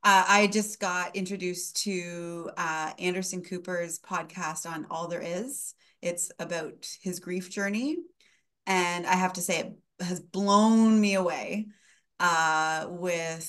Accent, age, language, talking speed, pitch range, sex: American, 30-49, English, 140 wpm, 160-190 Hz, female